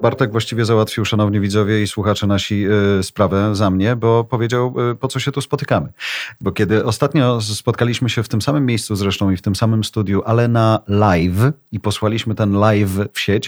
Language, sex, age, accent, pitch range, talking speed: Polish, male, 40-59, native, 100-120 Hz, 195 wpm